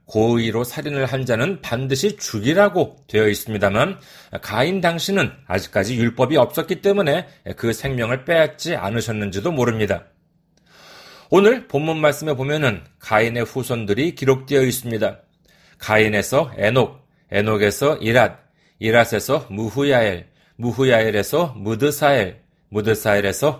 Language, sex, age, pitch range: Korean, male, 40-59, 110-165 Hz